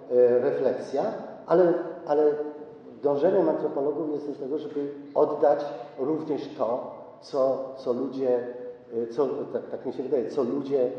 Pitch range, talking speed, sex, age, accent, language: 125-150 Hz, 125 wpm, male, 50-69, native, Polish